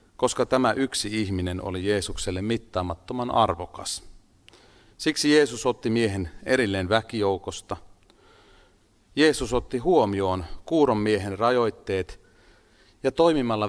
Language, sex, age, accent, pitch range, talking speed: Finnish, male, 40-59, native, 95-120 Hz, 95 wpm